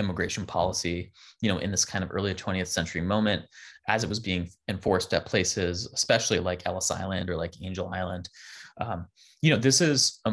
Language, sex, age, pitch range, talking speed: English, male, 20-39, 90-110 Hz, 190 wpm